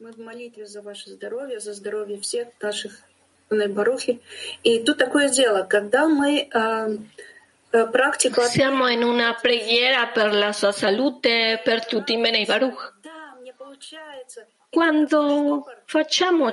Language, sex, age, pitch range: Italian, female, 40-59, 215-285 Hz